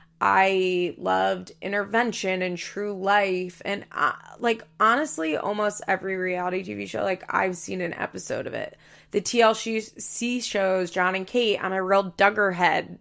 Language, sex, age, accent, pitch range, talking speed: English, female, 20-39, American, 180-210 Hz, 150 wpm